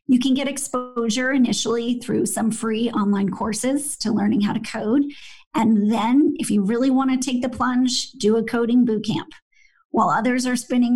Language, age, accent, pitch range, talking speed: English, 40-59, American, 215-255 Hz, 185 wpm